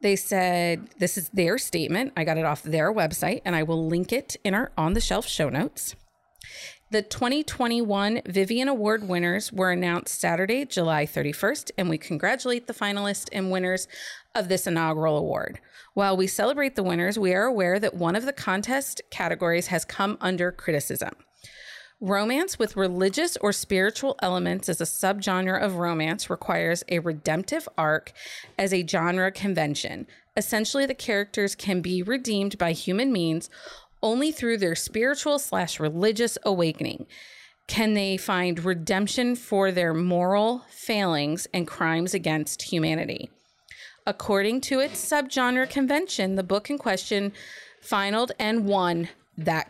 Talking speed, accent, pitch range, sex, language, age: 145 wpm, American, 175-225 Hz, female, English, 30-49